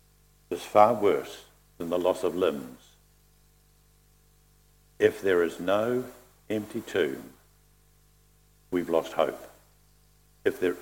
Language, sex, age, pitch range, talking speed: English, male, 60-79, 125-170 Hz, 105 wpm